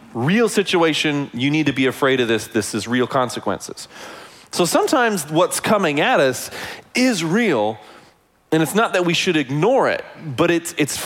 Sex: male